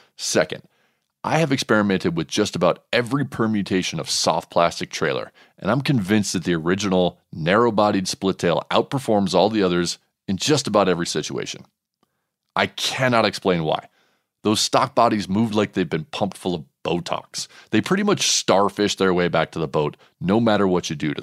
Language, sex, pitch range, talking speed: English, male, 90-125 Hz, 175 wpm